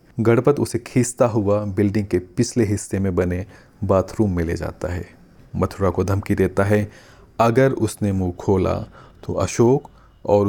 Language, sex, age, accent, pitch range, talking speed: Hindi, male, 40-59, native, 90-110 Hz, 155 wpm